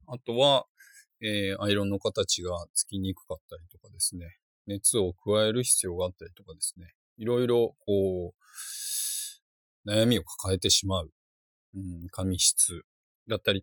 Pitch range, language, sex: 90-135 Hz, Japanese, male